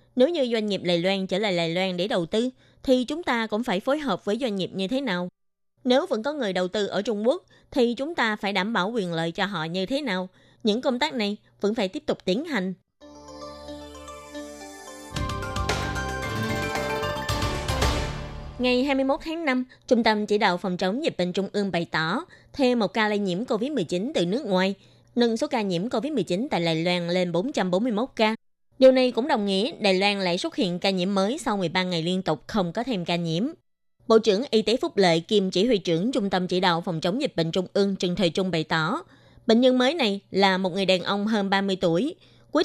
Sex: female